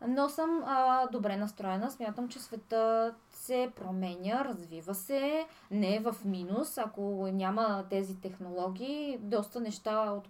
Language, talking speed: Bulgarian, 135 wpm